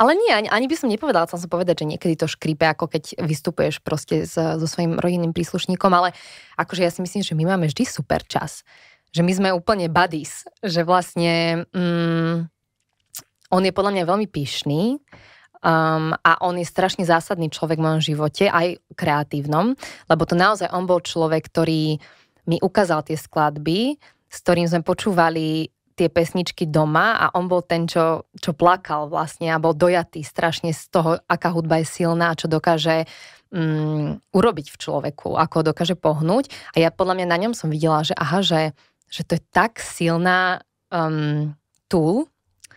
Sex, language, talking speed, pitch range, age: female, Slovak, 170 wpm, 155-180 Hz, 20-39